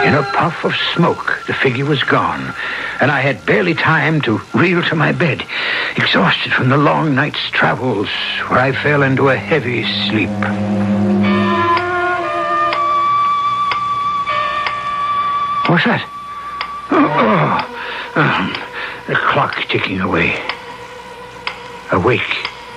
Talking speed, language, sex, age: 105 wpm, English, male, 60-79